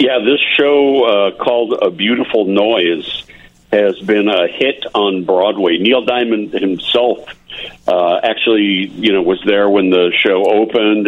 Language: English